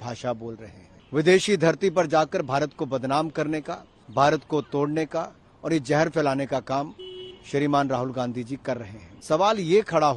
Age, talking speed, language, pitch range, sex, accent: 50-69, 195 wpm, Bengali, 135-190 Hz, male, native